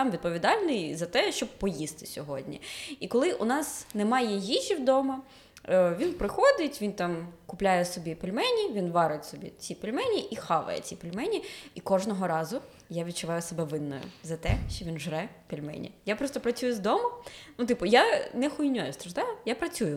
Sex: female